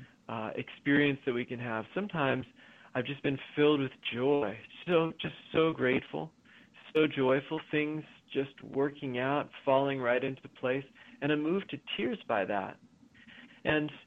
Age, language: 40-59, English